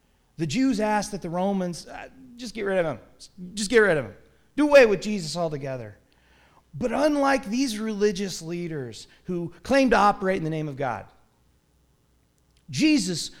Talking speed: 165 wpm